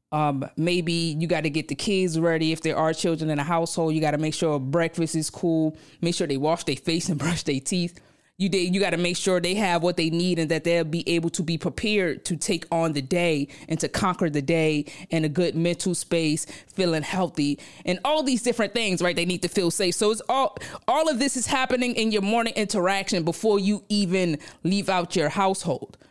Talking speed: 230 wpm